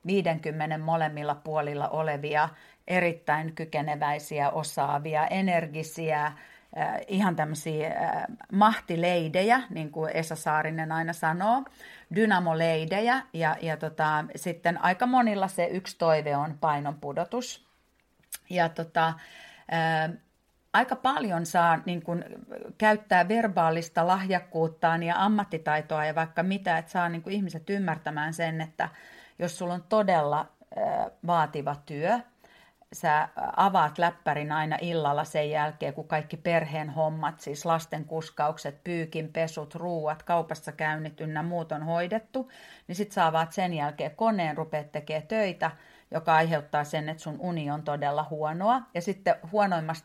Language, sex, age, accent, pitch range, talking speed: English, female, 40-59, Finnish, 155-180 Hz, 115 wpm